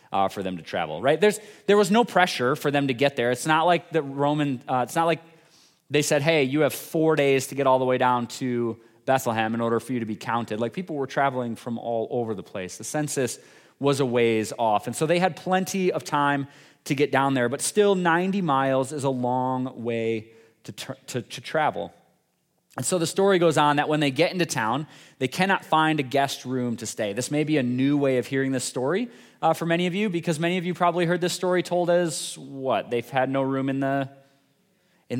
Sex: male